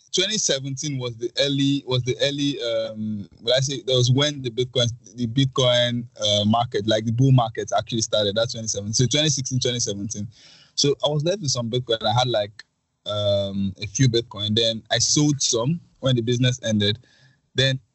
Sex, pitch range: male, 110-135 Hz